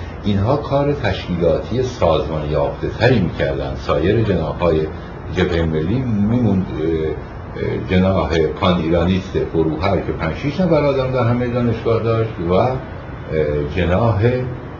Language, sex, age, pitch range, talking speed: Persian, male, 60-79, 80-115 Hz, 100 wpm